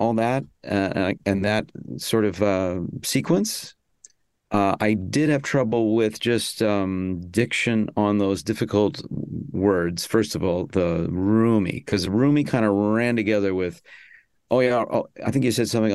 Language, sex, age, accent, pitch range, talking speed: English, male, 50-69, American, 95-115 Hz, 160 wpm